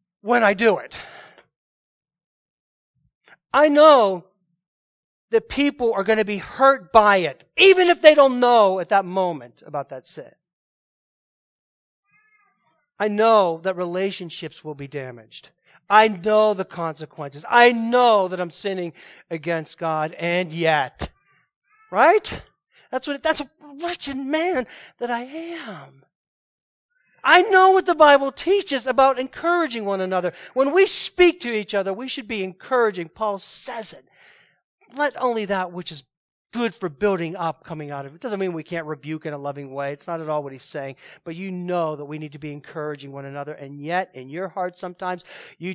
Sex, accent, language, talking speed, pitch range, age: male, American, English, 165 wpm, 160-240 Hz, 40-59